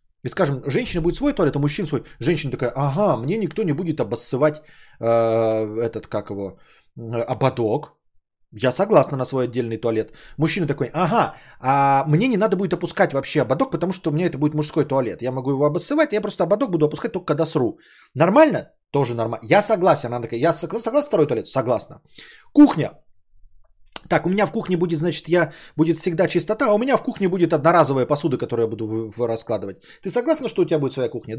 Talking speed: 200 wpm